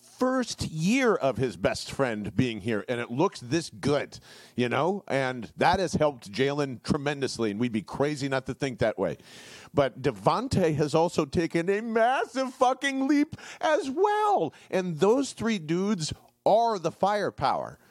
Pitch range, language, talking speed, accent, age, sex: 135-220 Hz, English, 160 wpm, American, 40-59, male